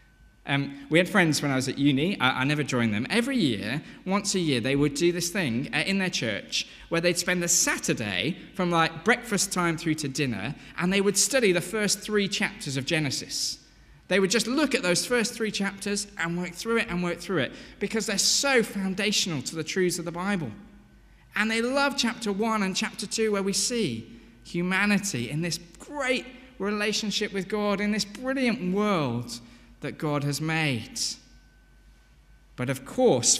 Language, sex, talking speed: English, male, 190 wpm